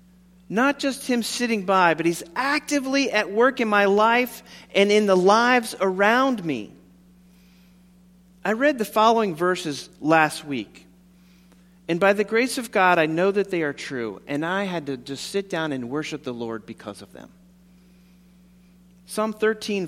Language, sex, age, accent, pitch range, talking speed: English, male, 40-59, American, 150-190 Hz, 165 wpm